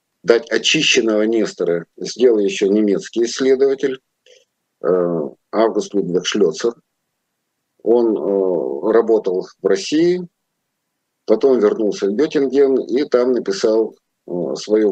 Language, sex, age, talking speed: Russian, male, 50-69, 100 wpm